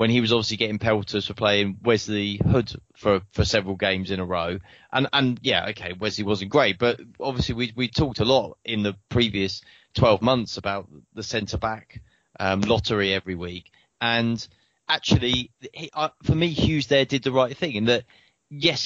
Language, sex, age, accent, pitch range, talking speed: English, male, 30-49, British, 105-130 Hz, 185 wpm